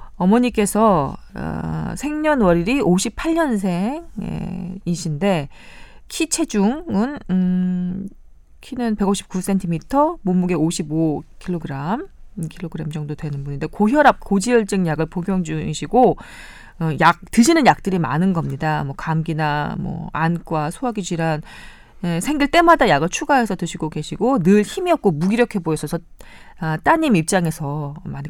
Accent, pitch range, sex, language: native, 160-220 Hz, female, Korean